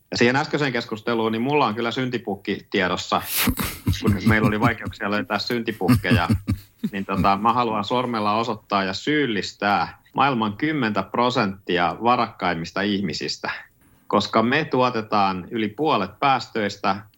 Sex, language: male, Finnish